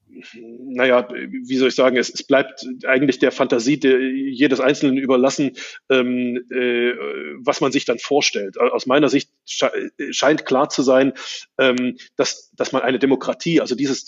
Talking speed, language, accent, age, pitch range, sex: 130 wpm, German, German, 30-49, 130-150 Hz, male